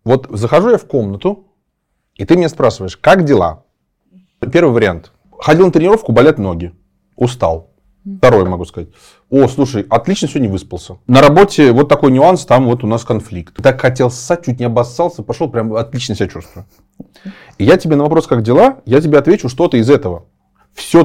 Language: Russian